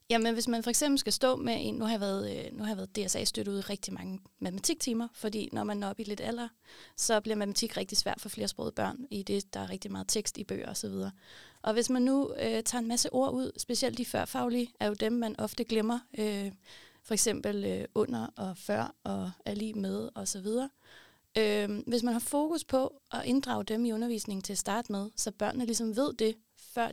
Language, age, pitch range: Danish, 30-49, 205-245 Hz